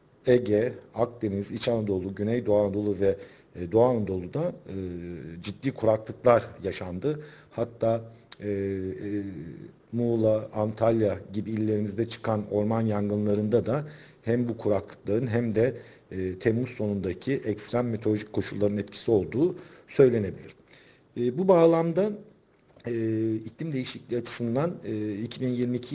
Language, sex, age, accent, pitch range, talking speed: Turkish, male, 50-69, native, 100-125 Hz, 95 wpm